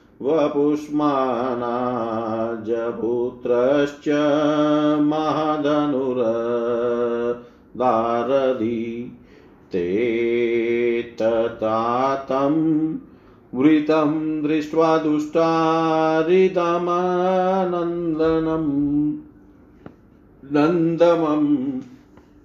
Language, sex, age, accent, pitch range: Hindi, male, 50-69, native, 120-155 Hz